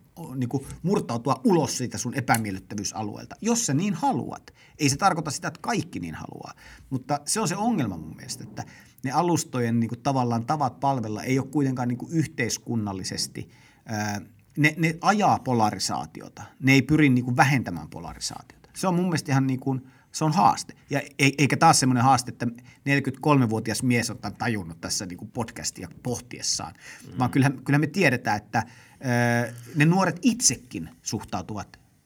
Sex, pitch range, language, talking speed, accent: male, 115-145 Hz, Finnish, 150 wpm, native